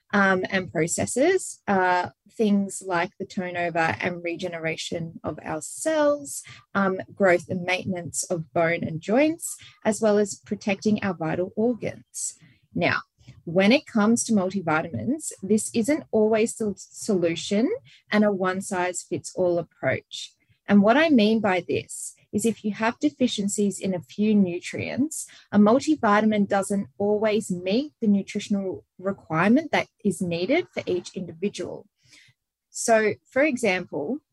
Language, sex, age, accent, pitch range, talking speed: English, female, 20-39, Australian, 180-220 Hz, 130 wpm